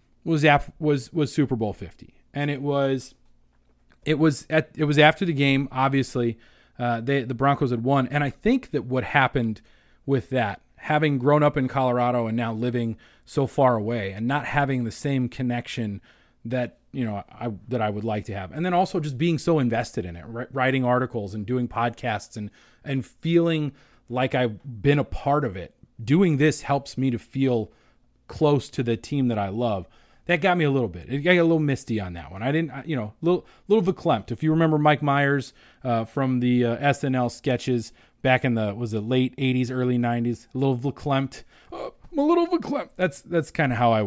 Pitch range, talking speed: 120-155 Hz, 205 wpm